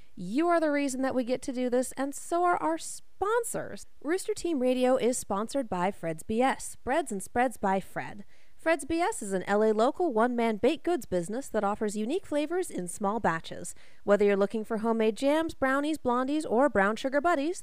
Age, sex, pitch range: 30-49, female, 205-295 Hz